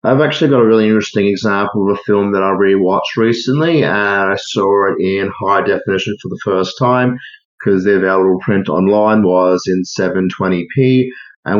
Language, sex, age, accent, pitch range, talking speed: English, male, 30-49, Australian, 100-125 Hz, 175 wpm